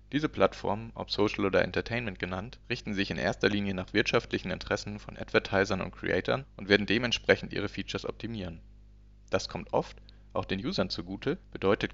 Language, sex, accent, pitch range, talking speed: German, male, German, 95-115 Hz, 165 wpm